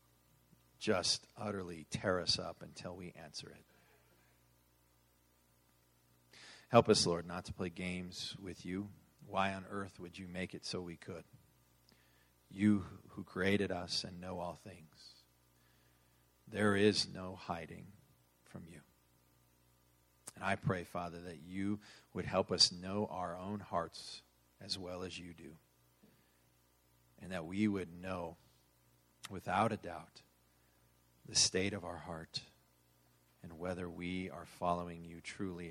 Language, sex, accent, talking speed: English, male, American, 135 wpm